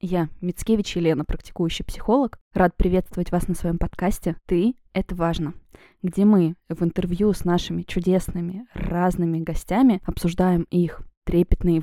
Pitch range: 170-190 Hz